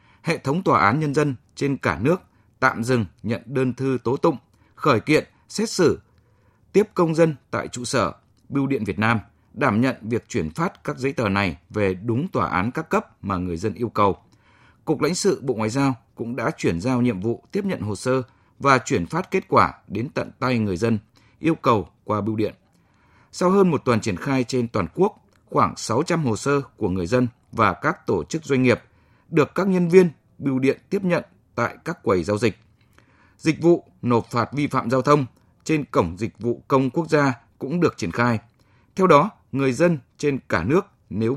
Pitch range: 110-145 Hz